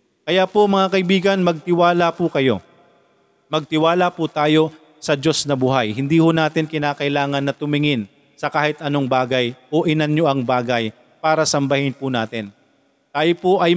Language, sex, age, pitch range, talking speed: Filipino, male, 40-59, 140-170 Hz, 155 wpm